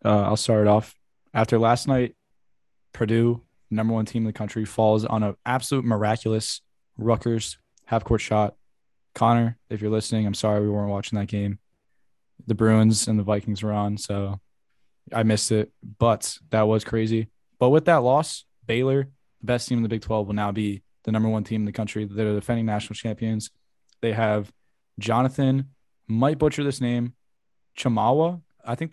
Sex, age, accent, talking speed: male, 10-29, American, 175 wpm